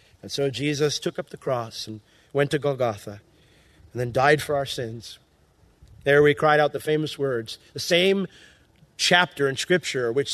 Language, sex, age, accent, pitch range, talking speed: English, male, 40-59, American, 125-155 Hz, 175 wpm